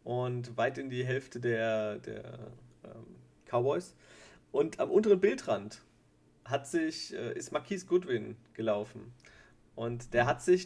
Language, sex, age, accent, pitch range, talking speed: German, male, 40-59, German, 120-180 Hz, 140 wpm